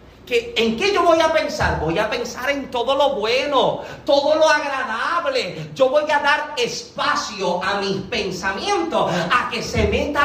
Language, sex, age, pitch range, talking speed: Spanish, male, 40-59, 205-290 Hz, 165 wpm